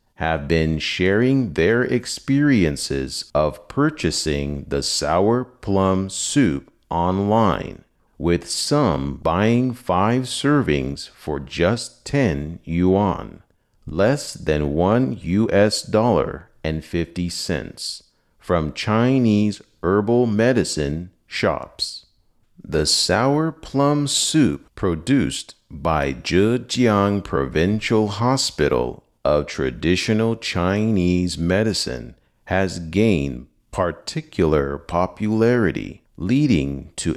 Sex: male